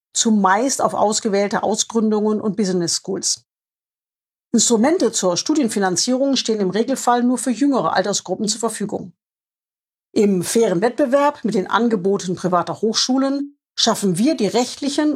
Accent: German